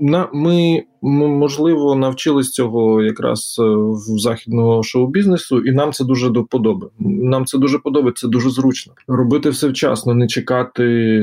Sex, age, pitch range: male, 20-39, 120-145 Hz